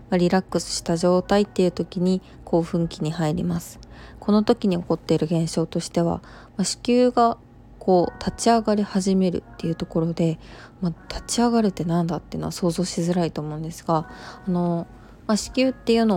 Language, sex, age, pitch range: Japanese, female, 20-39, 165-205 Hz